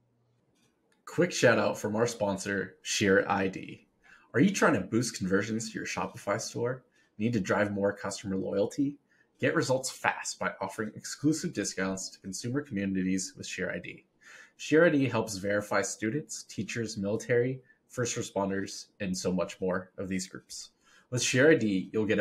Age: 20-39